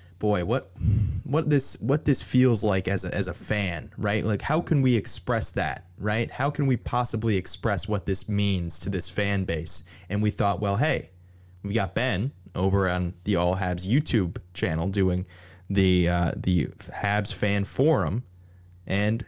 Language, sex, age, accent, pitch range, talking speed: English, male, 20-39, American, 90-125 Hz, 175 wpm